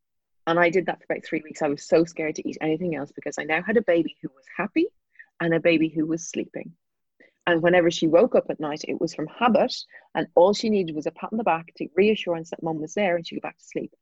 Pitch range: 165-225 Hz